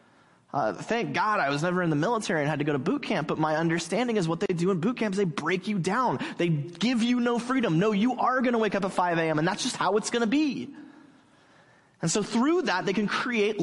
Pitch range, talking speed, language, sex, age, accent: 160-205 Hz, 265 wpm, English, male, 20-39, American